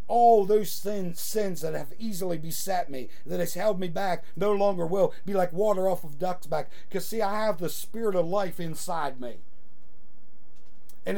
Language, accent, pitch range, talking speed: English, American, 165-205 Hz, 190 wpm